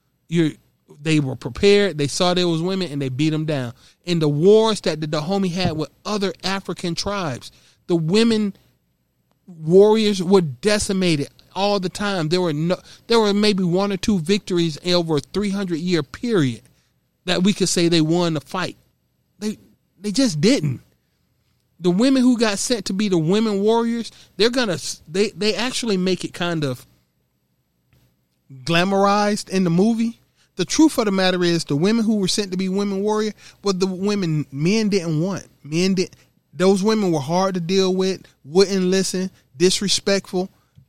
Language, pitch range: English, 150-200 Hz